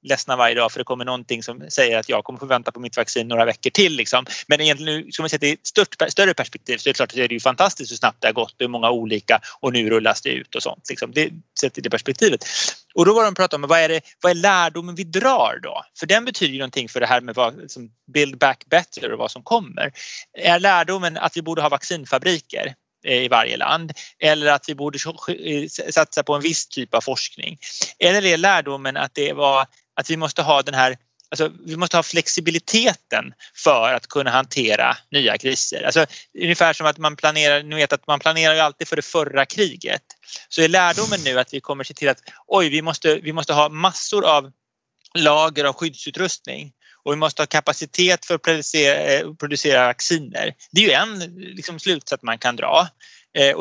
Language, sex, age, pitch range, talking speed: Swedish, male, 30-49, 130-170 Hz, 215 wpm